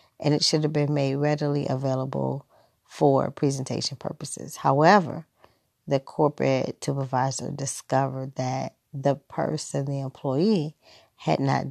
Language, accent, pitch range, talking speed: English, American, 135-160 Hz, 120 wpm